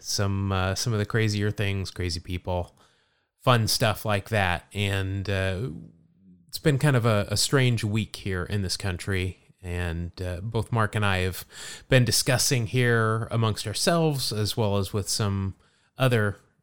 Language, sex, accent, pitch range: English, male, American, 100-125 Hz